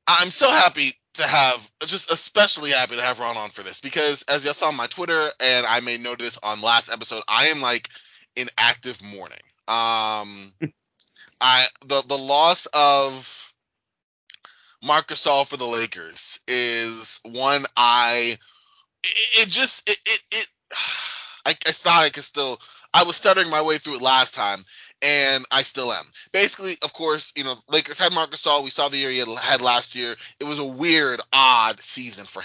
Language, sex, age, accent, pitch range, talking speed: English, male, 20-39, American, 115-145 Hz, 180 wpm